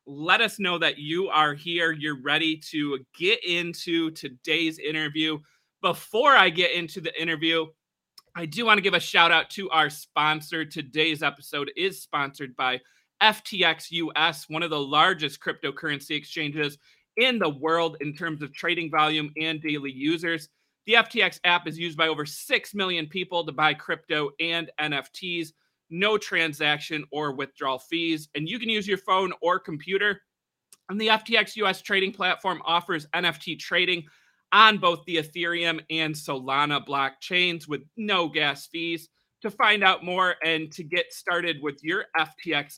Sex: male